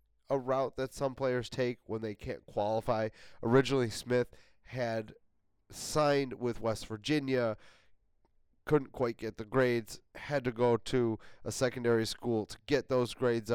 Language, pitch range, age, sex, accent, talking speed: English, 110-130 Hz, 30-49, male, American, 145 wpm